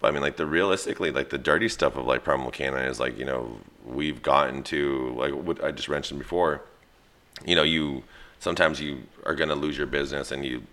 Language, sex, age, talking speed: English, male, 30-49, 220 wpm